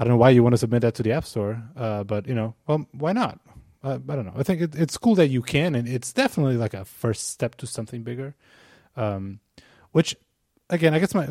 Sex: male